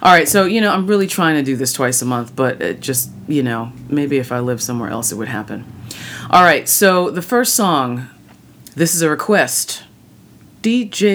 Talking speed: 210 wpm